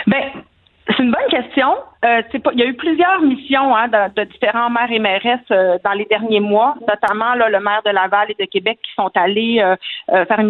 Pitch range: 210-265 Hz